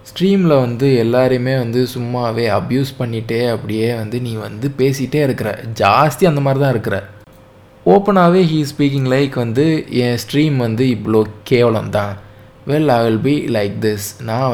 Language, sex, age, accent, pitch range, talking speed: Tamil, male, 20-39, native, 115-155 Hz, 145 wpm